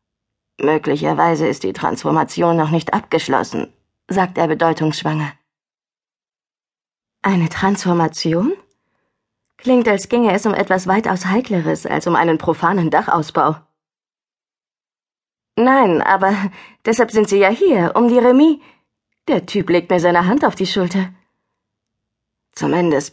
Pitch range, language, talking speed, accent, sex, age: 160-205 Hz, German, 115 wpm, German, female, 20-39